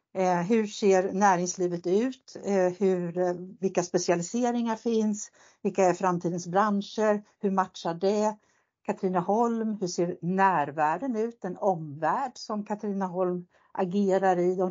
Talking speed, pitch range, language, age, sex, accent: 120 wpm, 180-225 Hz, Swedish, 60-79, female, native